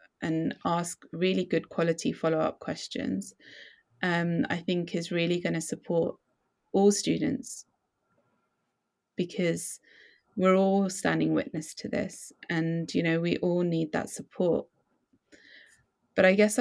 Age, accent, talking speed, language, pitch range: 20-39, British, 125 wpm, English, 160-180 Hz